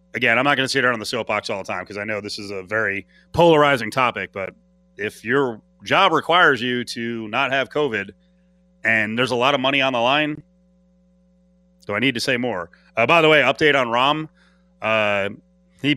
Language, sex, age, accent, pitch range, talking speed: English, male, 30-49, American, 120-180 Hz, 210 wpm